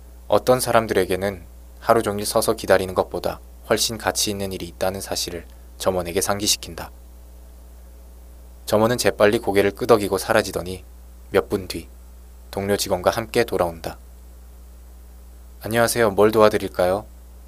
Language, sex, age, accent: Korean, male, 20-39, native